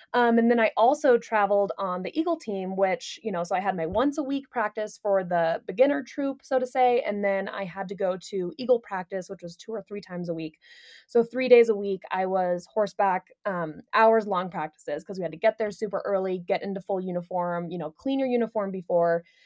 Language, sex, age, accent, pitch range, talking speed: English, female, 20-39, American, 175-225 Hz, 230 wpm